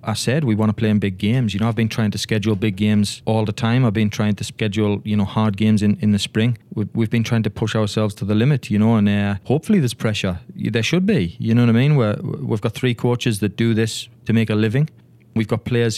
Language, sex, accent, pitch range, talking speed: English, male, British, 105-125 Hz, 275 wpm